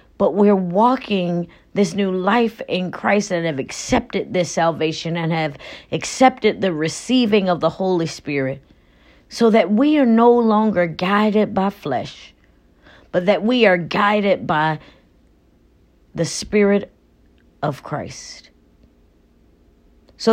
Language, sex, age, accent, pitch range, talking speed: English, female, 40-59, American, 155-215 Hz, 125 wpm